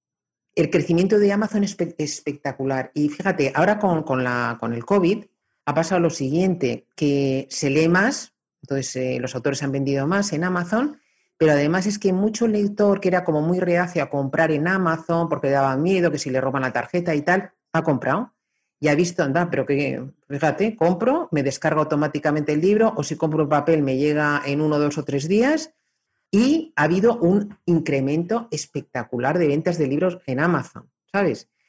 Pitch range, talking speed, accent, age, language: 145-190 Hz, 185 wpm, Spanish, 40-59, Spanish